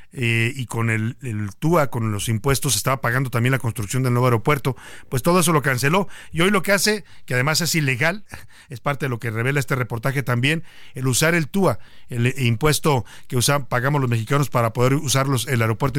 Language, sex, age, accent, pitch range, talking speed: Spanish, male, 50-69, Mexican, 120-150 Hz, 205 wpm